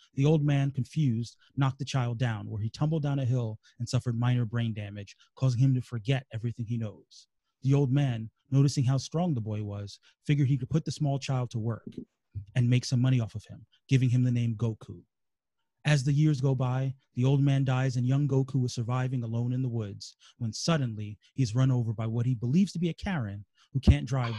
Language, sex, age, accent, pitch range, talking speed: English, male, 30-49, American, 115-140 Hz, 220 wpm